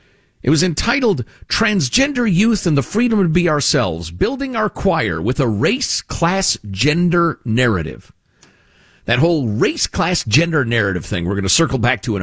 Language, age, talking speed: English, 50-69, 145 wpm